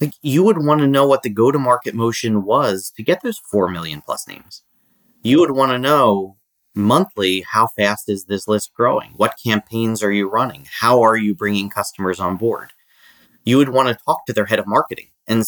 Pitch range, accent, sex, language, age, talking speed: 100-125 Hz, American, male, English, 30-49, 200 wpm